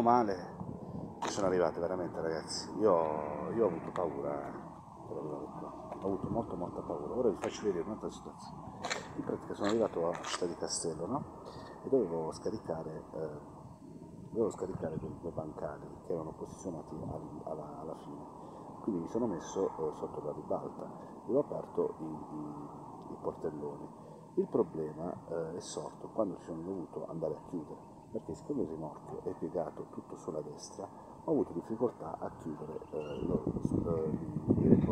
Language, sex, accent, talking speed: Italian, male, native, 150 wpm